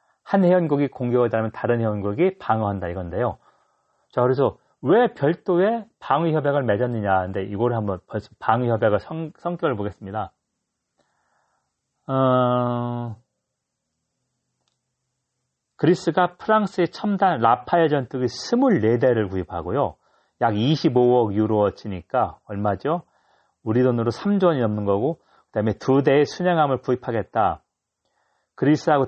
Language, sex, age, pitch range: Korean, male, 40-59, 105-155 Hz